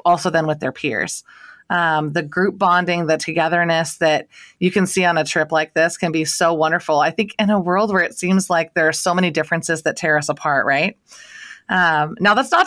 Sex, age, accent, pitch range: female, 30-49, American, 160-195 Hz